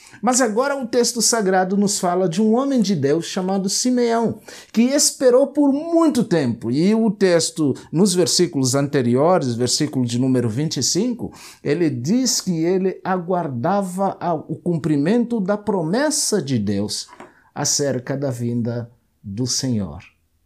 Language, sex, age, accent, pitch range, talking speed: Portuguese, male, 50-69, Brazilian, 120-180 Hz, 130 wpm